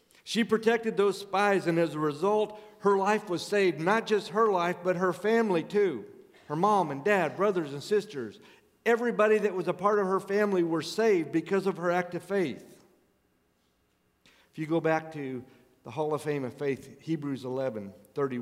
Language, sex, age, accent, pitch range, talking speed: English, male, 50-69, American, 125-180 Hz, 185 wpm